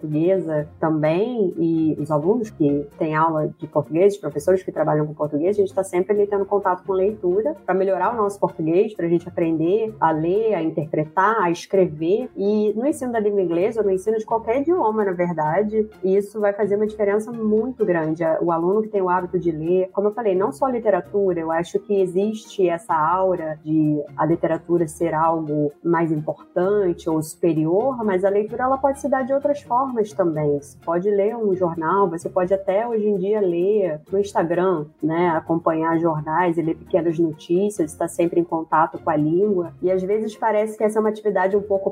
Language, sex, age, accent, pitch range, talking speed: Portuguese, female, 20-39, Brazilian, 165-205 Hz, 205 wpm